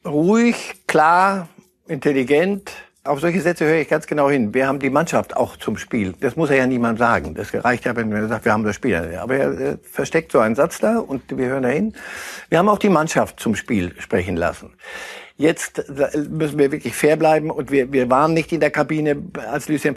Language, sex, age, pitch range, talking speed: German, male, 60-79, 130-170 Hz, 215 wpm